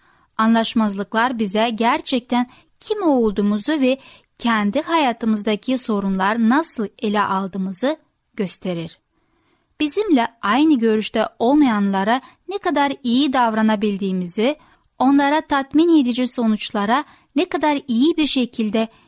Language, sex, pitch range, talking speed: Turkish, female, 215-285 Hz, 95 wpm